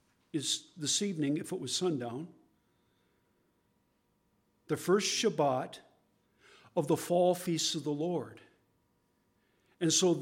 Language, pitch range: English, 150-185 Hz